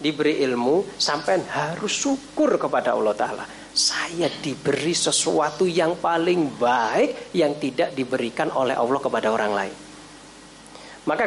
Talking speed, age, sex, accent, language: 120 wpm, 40-59, male, native, Indonesian